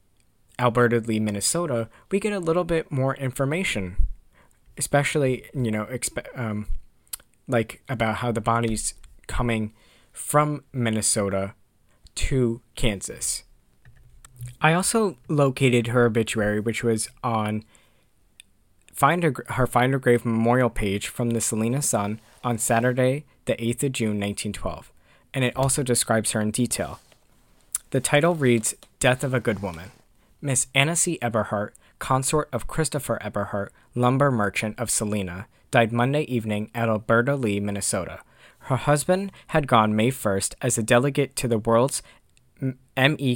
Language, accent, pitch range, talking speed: English, American, 105-135 Hz, 135 wpm